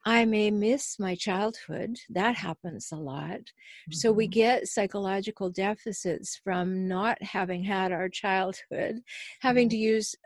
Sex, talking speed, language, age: female, 135 wpm, English, 50-69